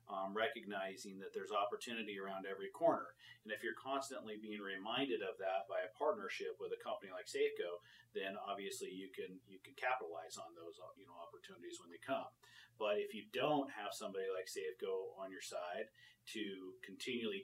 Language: English